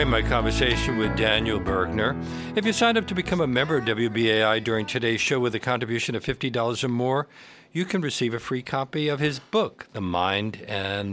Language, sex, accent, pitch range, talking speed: English, male, American, 95-125 Hz, 200 wpm